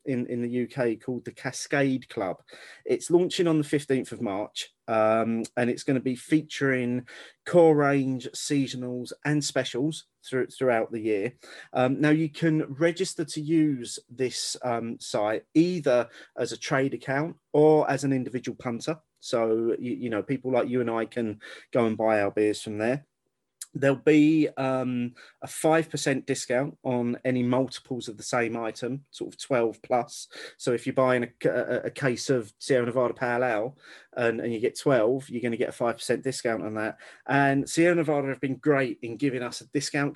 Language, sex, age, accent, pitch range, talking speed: English, male, 30-49, British, 120-150 Hz, 185 wpm